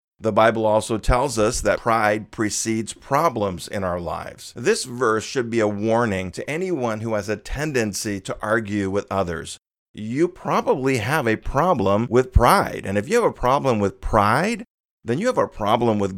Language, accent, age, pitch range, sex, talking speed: English, American, 40-59, 105-125 Hz, male, 180 wpm